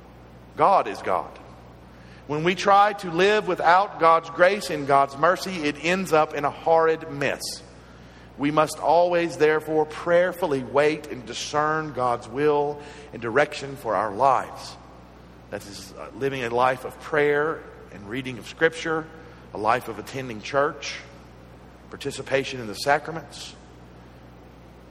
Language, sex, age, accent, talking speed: English, male, 50-69, American, 135 wpm